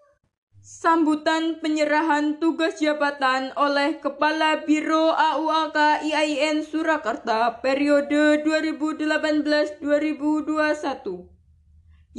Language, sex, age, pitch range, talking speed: Indonesian, female, 20-39, 260-310 Hz, 60 wpm